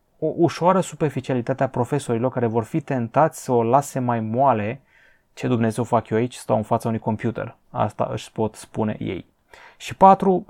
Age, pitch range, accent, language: 20-39, 110-145 Hz, native, Romanian